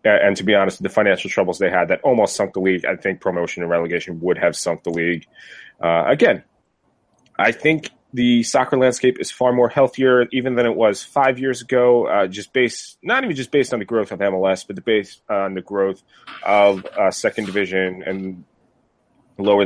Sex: male